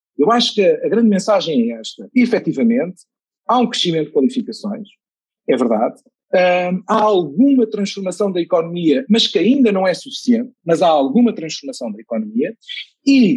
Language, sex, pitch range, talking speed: Portuguese, male, 180-235 Hz, 155 wpm